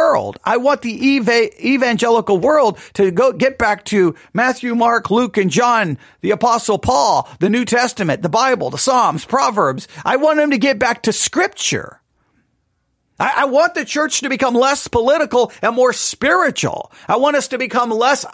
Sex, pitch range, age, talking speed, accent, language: male, 210-275 Hz, 40-59, 165 wpm, American, English